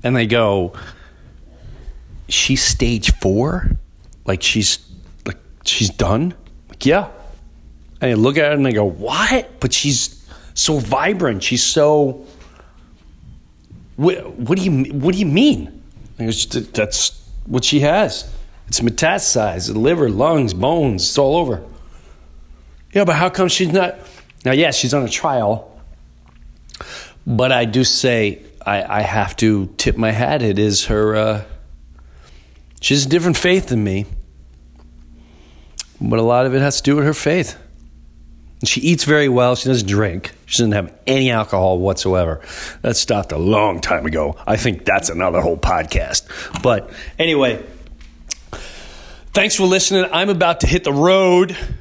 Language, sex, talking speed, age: English, male, 155 wpm, 40-59